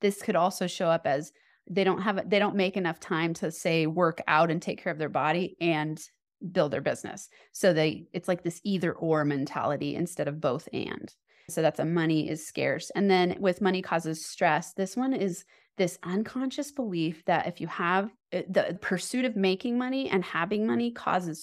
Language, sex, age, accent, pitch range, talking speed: English, female, 30-49, American, 155-185 Hz, 200 wpm